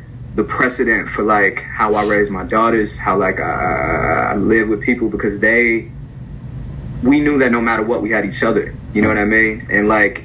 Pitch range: 105-125 Hz